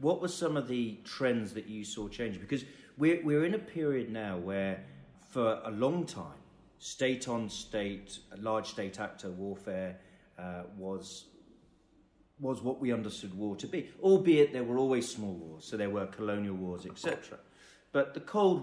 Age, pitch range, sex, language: 40-59, 100-130 Hz, male, English